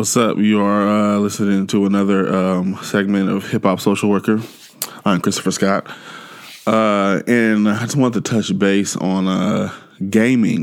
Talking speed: 160 wpm